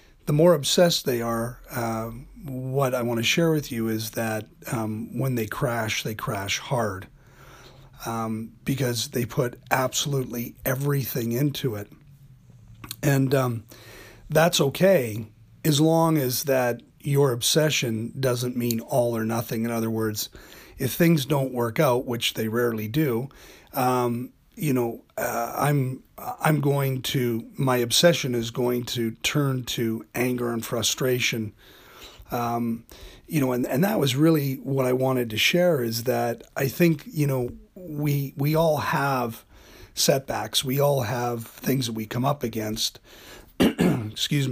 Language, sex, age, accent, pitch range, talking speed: English, male, 30-49, American, 115-140 Hz, 145 wpm